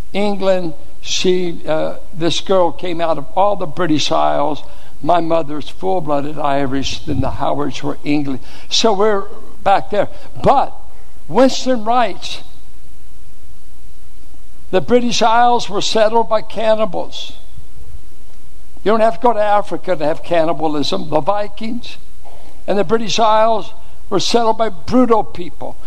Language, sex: English, male